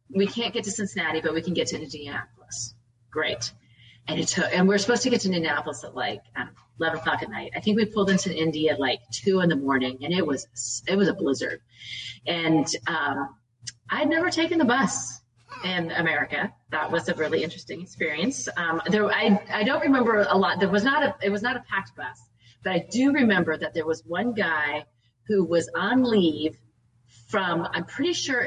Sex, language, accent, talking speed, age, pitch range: female, English, American, 210 wpm, 30-49, 145-210 Hz